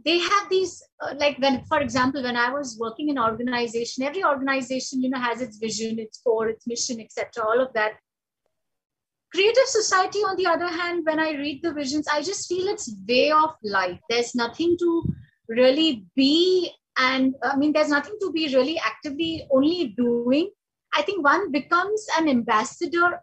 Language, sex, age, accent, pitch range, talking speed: English, female, 30-49, Indian, 255-335 Hz, 180 wpm